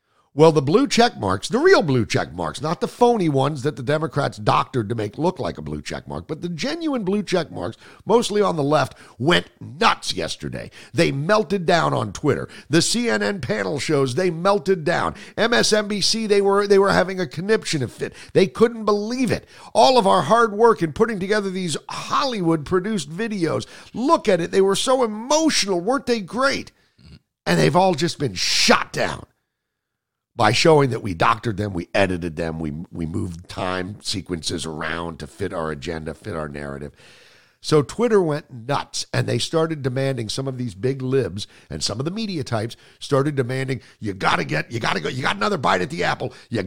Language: English